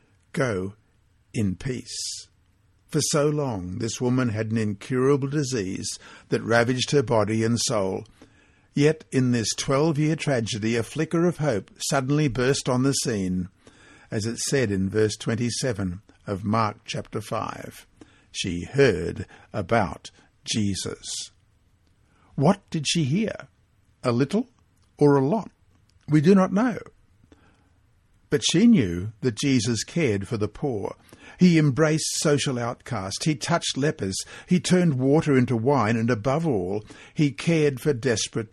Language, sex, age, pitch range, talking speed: English, male, 60-79, 105-145 Hz, 135 wpm